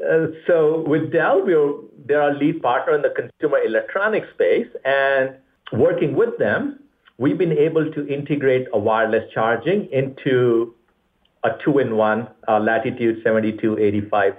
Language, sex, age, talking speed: English, male, 50-69, 135 wpm